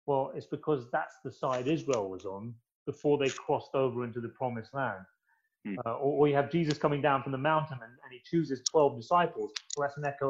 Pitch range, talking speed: 110-150 Hz, 220 wpm